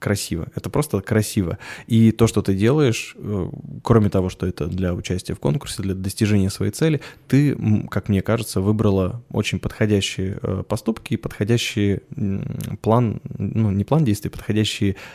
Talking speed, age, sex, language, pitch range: 145 wpm, 20-39, male, Russian, 100-115 Hz